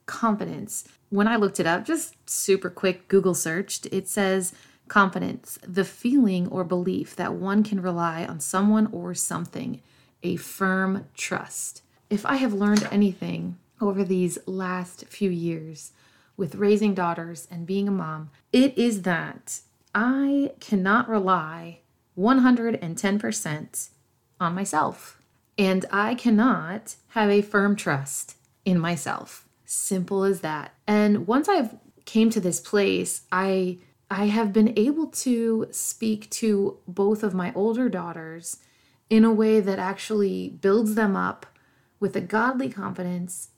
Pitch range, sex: 180-220 Hz, female